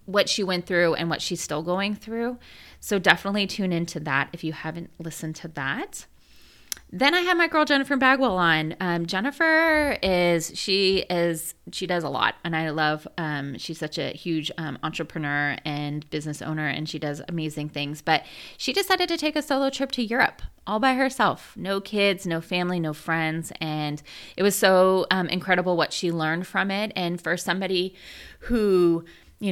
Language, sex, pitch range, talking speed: English, female, 160-205 Hz, 185 wpm